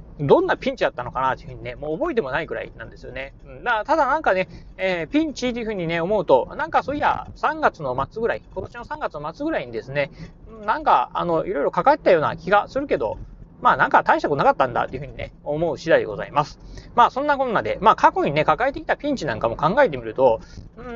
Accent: native